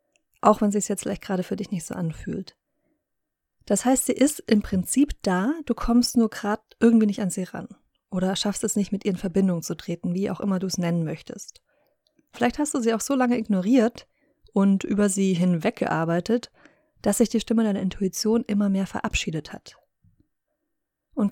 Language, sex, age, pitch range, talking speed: German, female, 30-49, 190-240 Hz, 195 wpm